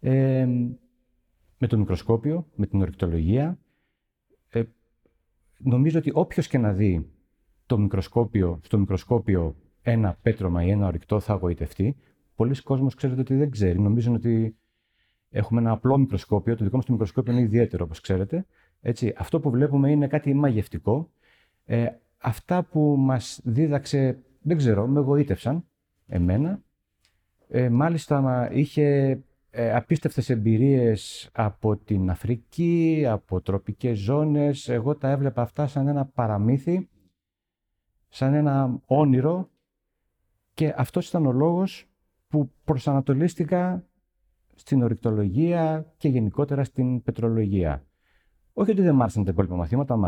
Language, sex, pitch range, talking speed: Greek, male, 105-145 Hz, 125 wpm